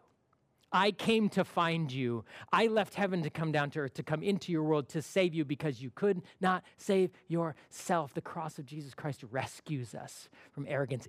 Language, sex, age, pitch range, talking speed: English, male, 30-49, 130-170 Hz, 195 wpm